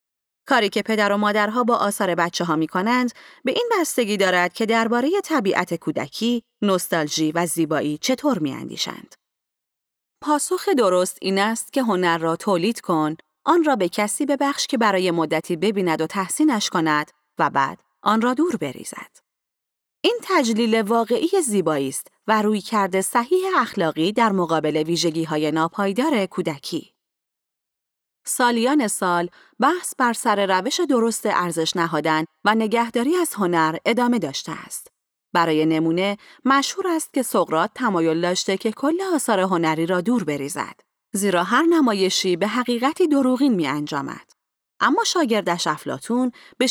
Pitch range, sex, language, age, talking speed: 175-255 Hz, female, Persian, 30-49, 140 wpm